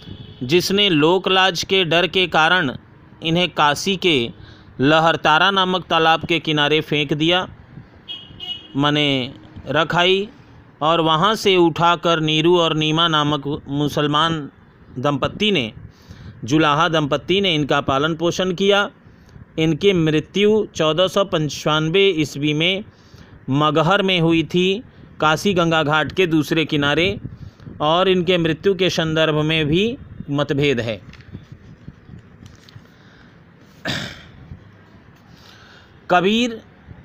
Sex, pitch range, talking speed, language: male, 145-180 Hz, 100 wpm, Hindi